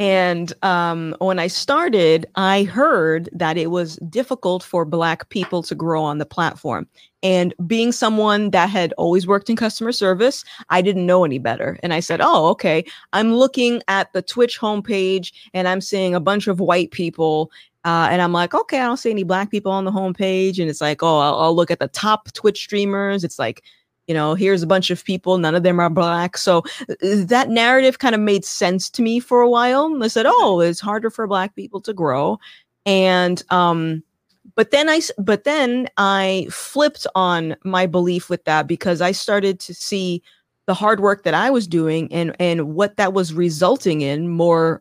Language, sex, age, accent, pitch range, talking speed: English, female, 30-49, American, 170-205 Hz, 200 wpm